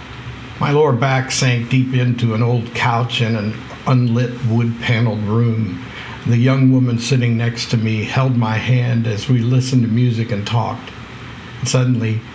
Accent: American